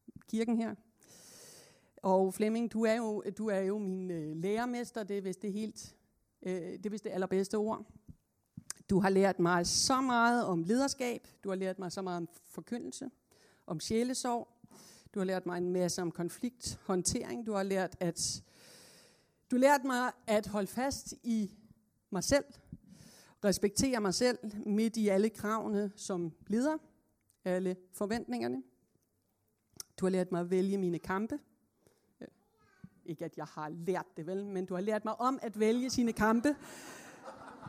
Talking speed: 150 wpm